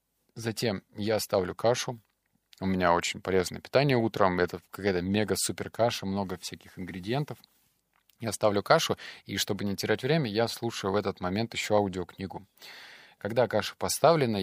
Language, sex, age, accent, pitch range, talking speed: Russian, male, 20-39, native, 95-115 Hz, 145 wpm